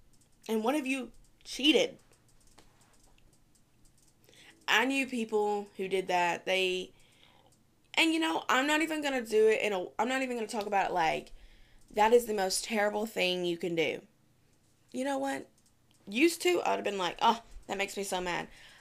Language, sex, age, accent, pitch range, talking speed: English, female, 20-39, American, 180-255 Hz, 185 wpm